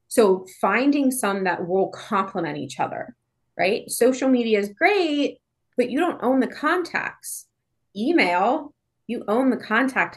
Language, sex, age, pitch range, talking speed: English, female, 20-39, 185-250 Hz, 140 wpm